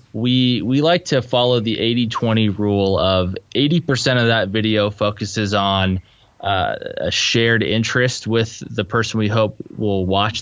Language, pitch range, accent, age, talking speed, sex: English, 100-120 Hz, American, 20-39, 150 wpm, male